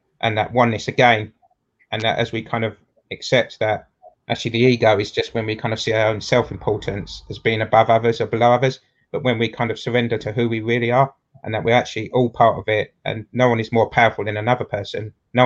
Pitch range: 110-125 Hz